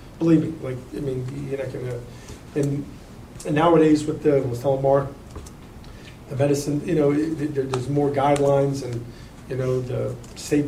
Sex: male